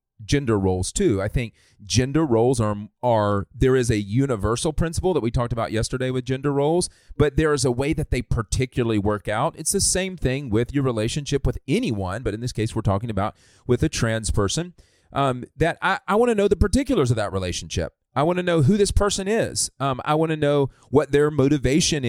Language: English